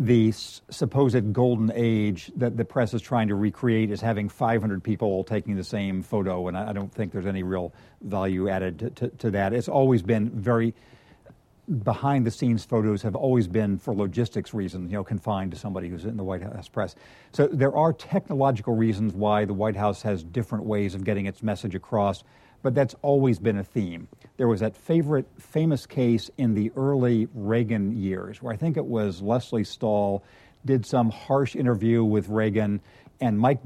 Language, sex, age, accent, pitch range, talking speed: English, male, 50-69, American, 105-125 Hz, 190 wpm